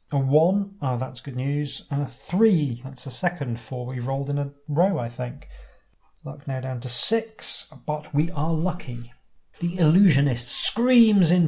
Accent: British